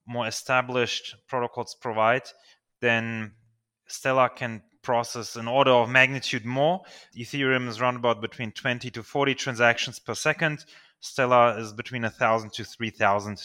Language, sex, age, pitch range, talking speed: English, male, 30-49, 115-145 Hz, 135 wpm